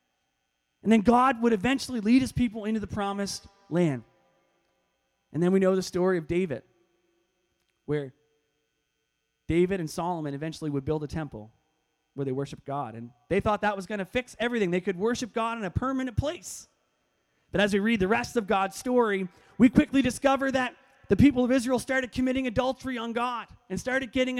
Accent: American